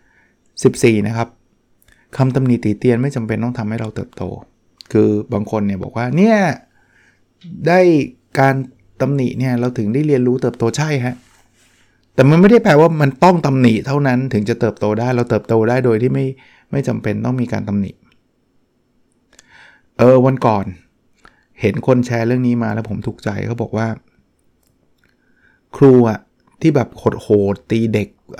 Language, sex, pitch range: Thai, male, 110-130 Hz